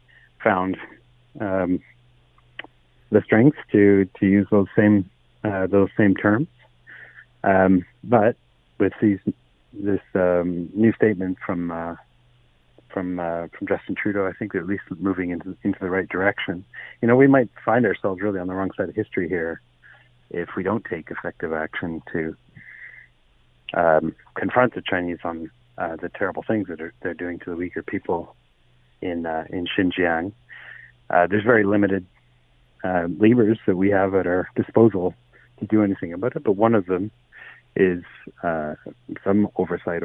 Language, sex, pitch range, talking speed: English, male, 85-110 Hz, 160 wpm